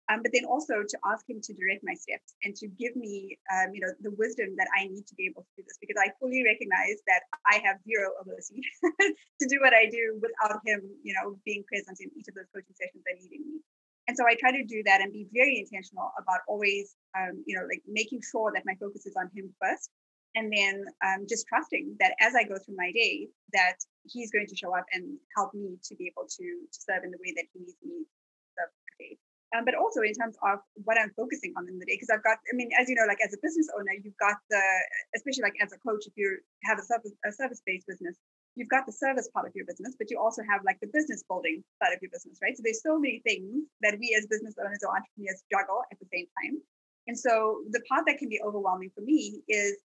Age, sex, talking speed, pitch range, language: 20-39, female, 260 wpm, 195-255 Hz, English